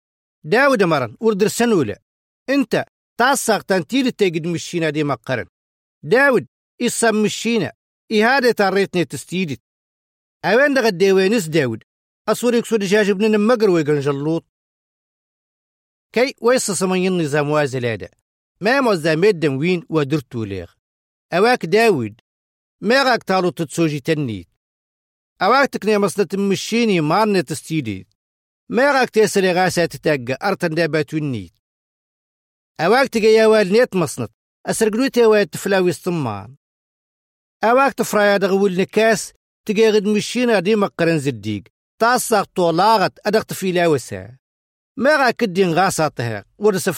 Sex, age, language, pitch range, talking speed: male, 50-69, Arabic, 145-220 Hz, 110 wpm